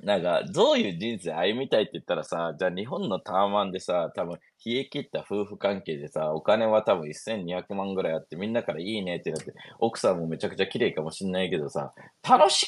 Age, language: 20-39, Japanese